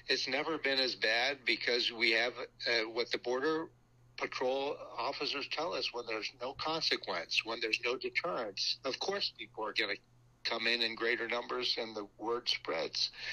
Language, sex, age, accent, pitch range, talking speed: English, male, 60-79, American, 115-130 Hz, 175 wpm